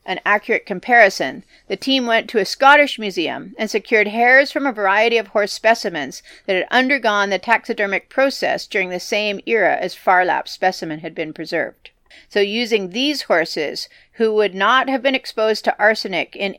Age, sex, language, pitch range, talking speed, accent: 40-59, female, English, 185-230 Hz, 175 wpm, American